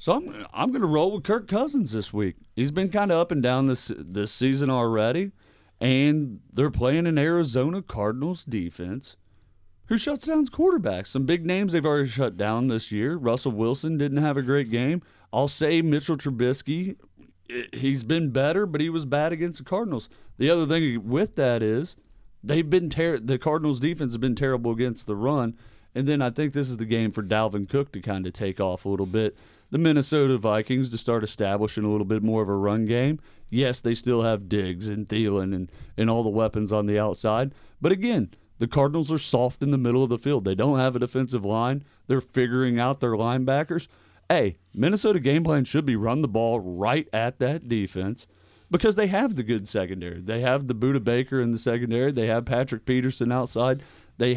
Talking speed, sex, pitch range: 205 wpm, male, 110-145 Hz